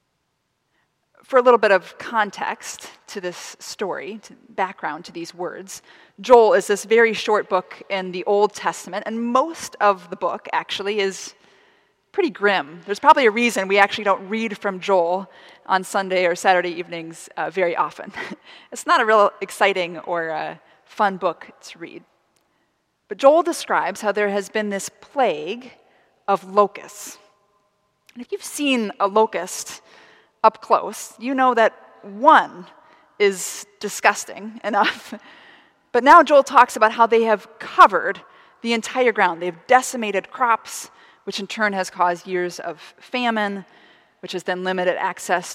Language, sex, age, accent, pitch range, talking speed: English, female, 30-49, American, 190-235 Hz, 155 wpm